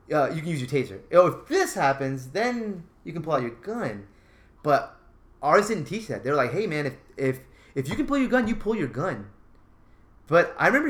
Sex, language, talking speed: male, English, 225 wpm